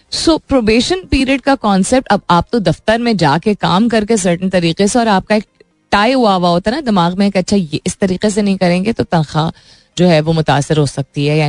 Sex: female